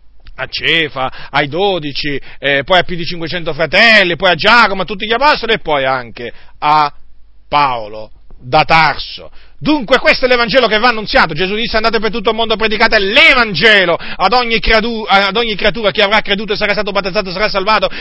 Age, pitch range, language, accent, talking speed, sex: 40-59, 160-225 Hz, Italian, native, 190 wpm, male